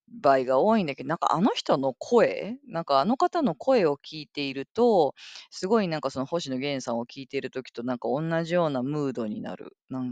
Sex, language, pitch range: female, Japanese, 135-205 Hz